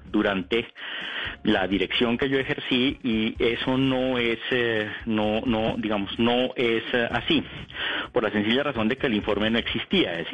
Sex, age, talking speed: male, 40-59, 160 wpm